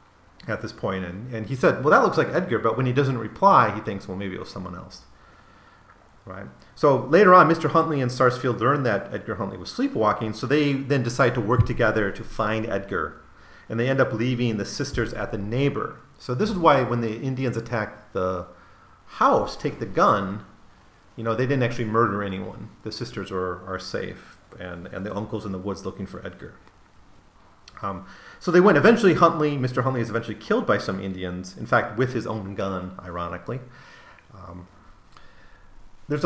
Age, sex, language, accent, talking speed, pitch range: 40-59, male, English, American, 195 wpm, 95-130 Hz